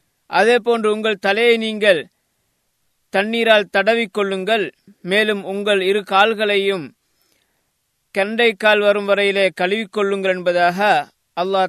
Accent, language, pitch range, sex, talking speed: native, Tamil, 180-215 Hz, male, 90 wpm